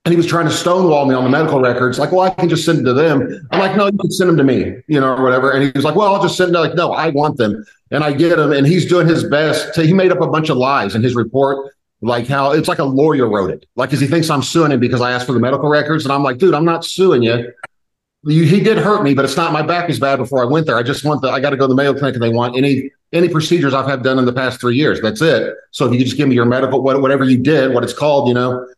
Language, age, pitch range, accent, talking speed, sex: English, 40-59, 130-160 Hz, American, 325 wpm, male